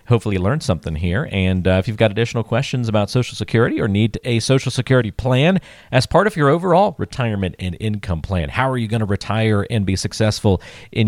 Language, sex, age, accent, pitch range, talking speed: English, male, 40-59, American, 95-125 Hz, 215 wpm